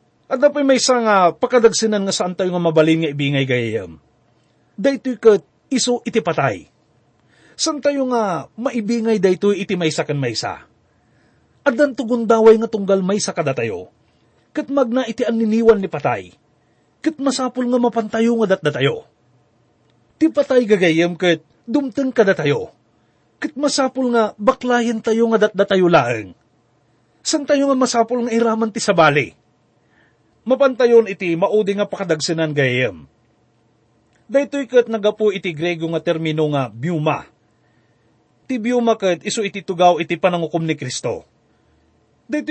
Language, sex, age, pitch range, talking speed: English, male, 30-49, 170-245 Hz, 125 wpm